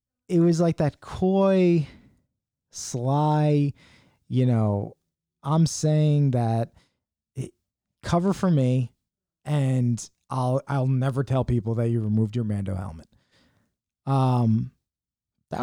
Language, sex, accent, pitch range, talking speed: English, male, American, 110-140 Hz, 110 wpm